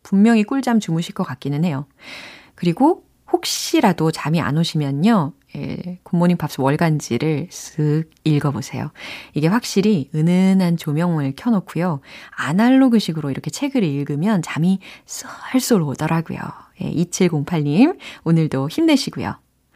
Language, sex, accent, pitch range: Korean, female, native, 160-260 Hz